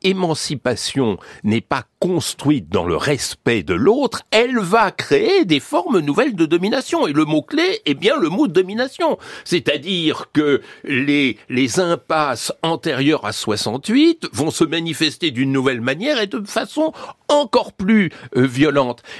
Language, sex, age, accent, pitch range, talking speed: French, male, 60-79, French, 120-195 Hz, 145 wpm